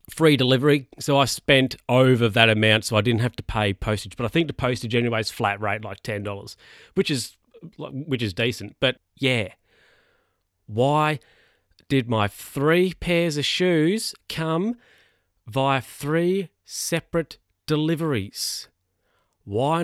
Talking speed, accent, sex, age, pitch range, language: 140 wpm, Australian, male, 30-49, 105-145 Hz, English